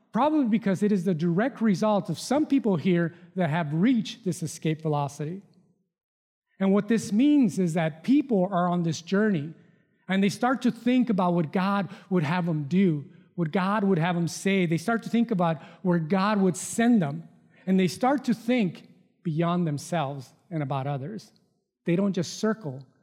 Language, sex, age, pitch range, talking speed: English, male, 40-59, 170-220 Hz, 180 wpm